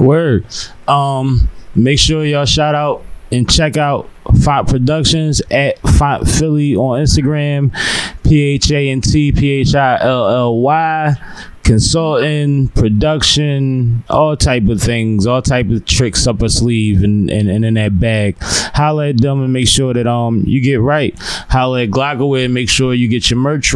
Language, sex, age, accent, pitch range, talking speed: English, male, 20-39, American, 110-140 Hz, 170 wpm